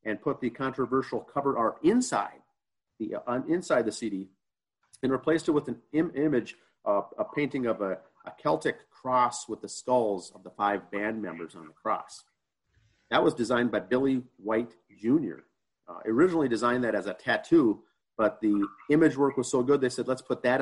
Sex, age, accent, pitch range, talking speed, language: male, 40-59, American, 110-140 Hz, 185 wpm, English